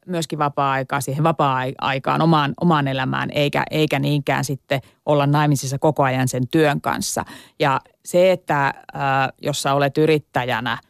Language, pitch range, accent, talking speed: Finnish, 135-165 Hz, native, 150 wpm